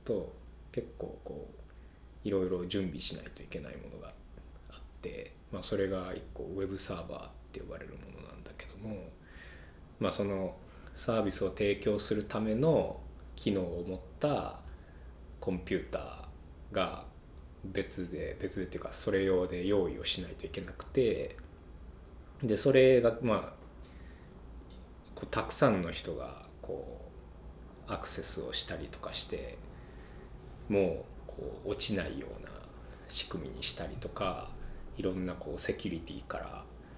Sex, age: male, 20-39